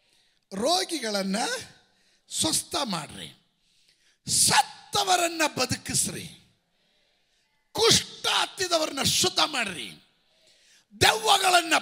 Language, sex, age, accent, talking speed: Kannada, male, 50-69, native, 50 wpm